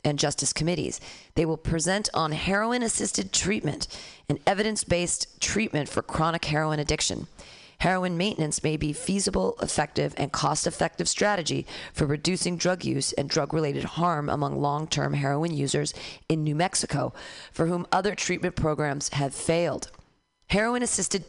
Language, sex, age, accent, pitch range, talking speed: English, female, 40-59, American, 145-180 Hz, 130 wpm